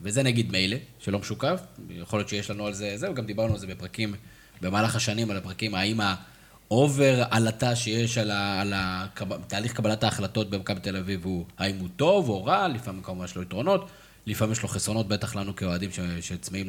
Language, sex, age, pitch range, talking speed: Hebrew, male, 20-39, 95-130 Hz, 195 wpm